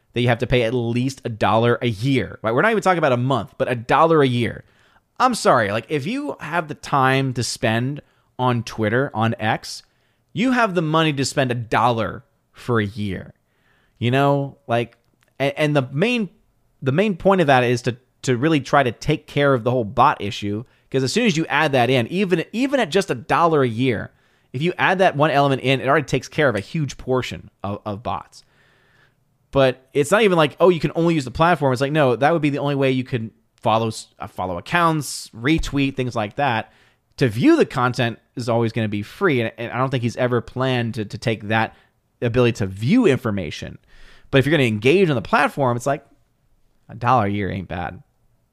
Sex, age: male, 30-49